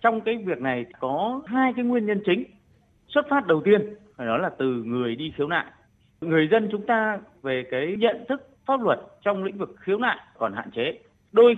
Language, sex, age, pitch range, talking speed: Vietnamese, male, 30-49, 170-240 Hz, 205 wpm